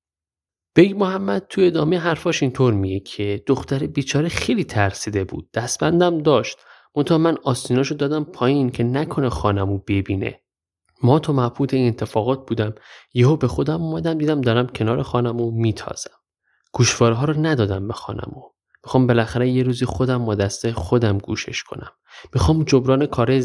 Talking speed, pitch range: 145 wpm, 110-145 Hz